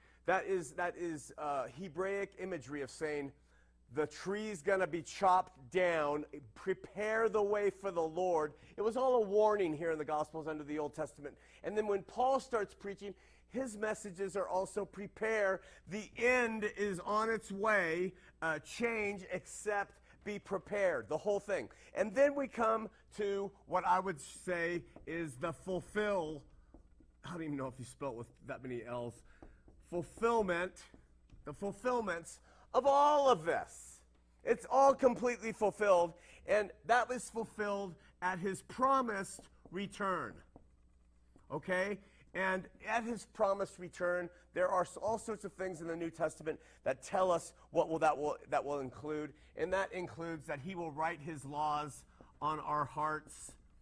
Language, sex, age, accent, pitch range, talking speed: English, male, 40-59, American, 150-205 Hz, 155 wpm